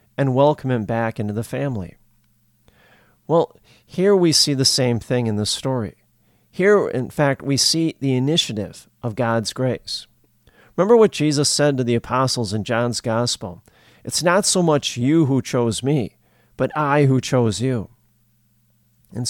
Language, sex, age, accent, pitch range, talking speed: English, male, 40-59, American, 110-145 Hz, 160 wpm